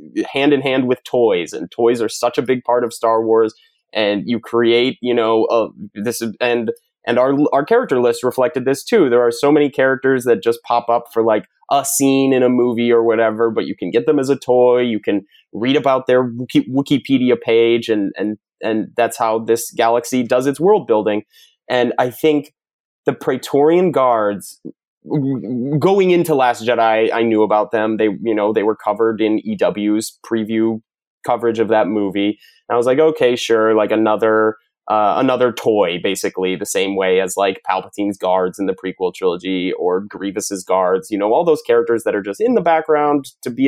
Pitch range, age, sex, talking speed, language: 110-145 Hz, 20-39, male, 195 wpm, English